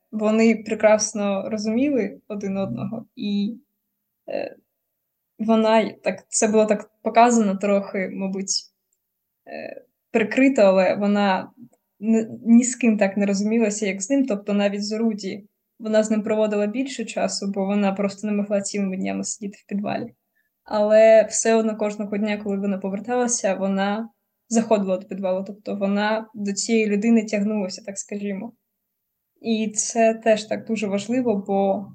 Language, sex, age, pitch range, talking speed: Ukrainian, female, 20-39, 200-225 Hz, 145 wpm